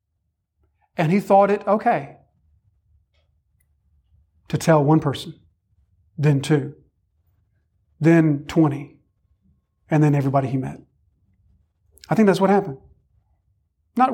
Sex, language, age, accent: male, English, 40-59, American